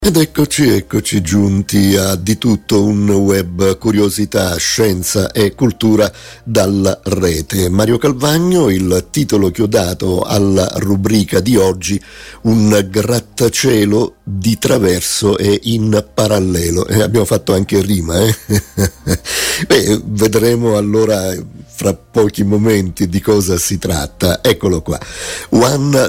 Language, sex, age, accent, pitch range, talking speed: Italian, male, 50-69, native, 95-110 Hz, 120 wpm